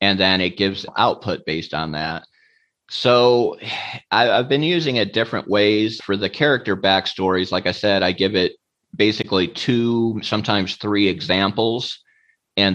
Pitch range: 90-110 Hz